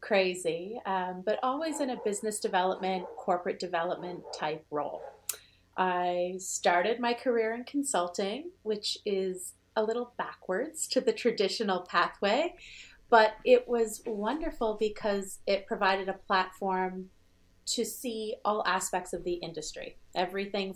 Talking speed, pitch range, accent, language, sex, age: 125 wpm, 175-215 Hz, American, English, female, 30-49